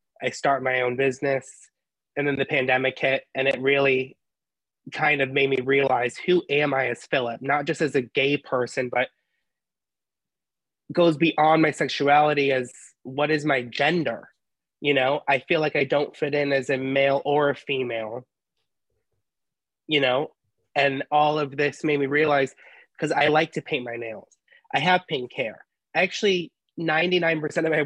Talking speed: 170 wpm